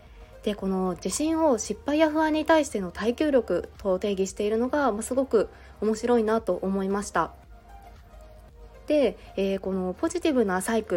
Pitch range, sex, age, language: 190-240 Hz, female, 20-39, Japanese